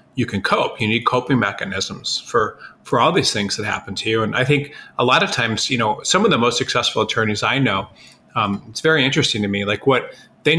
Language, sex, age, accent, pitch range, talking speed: English, male, 30-49, American, 100-125 Hz, 240 wpm